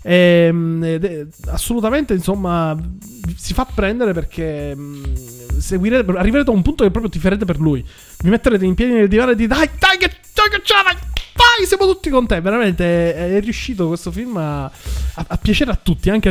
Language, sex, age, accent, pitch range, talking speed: Italian, male, 20-39, native, 160-220 Hz, 195 wpm